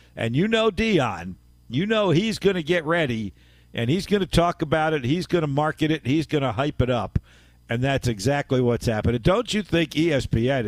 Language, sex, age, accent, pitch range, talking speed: English, male, 50-69, American, 105-155 Hz, 215 wpm